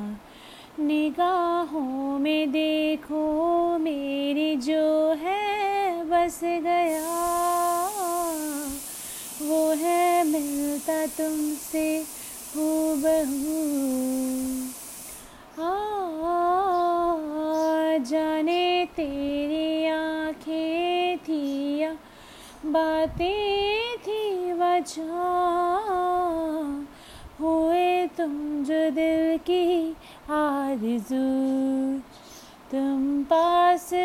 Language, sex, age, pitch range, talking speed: Hindi, female, 30-49, 280-345 Hz, 55 wpm